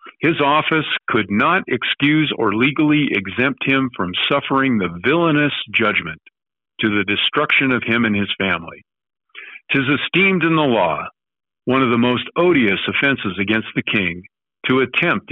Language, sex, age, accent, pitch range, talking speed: English, male, 50-69, American, 105-145 Hz, 150 wpm